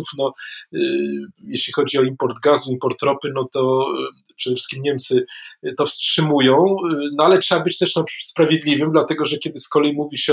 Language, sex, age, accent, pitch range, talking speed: Polish, male, 20-39, native, 130-155 Hz, 170 wpm